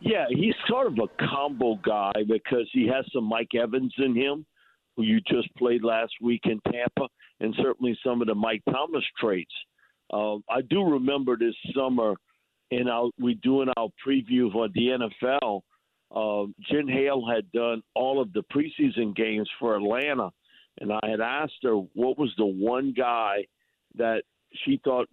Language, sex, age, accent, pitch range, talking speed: English, male, 50-69, American, 115-135 Hz, 165 wpm